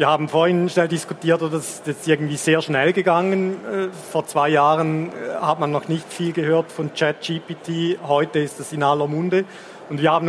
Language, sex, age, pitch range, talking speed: German, male, 40-59, 145-165 Hz, 190 wpm